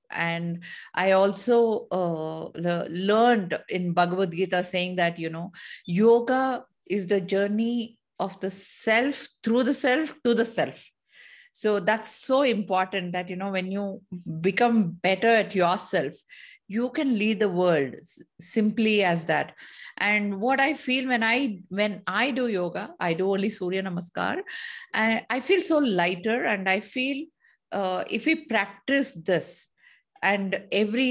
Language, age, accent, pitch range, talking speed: English, 50-69, Indian, 190-245 Hz, 145 wpm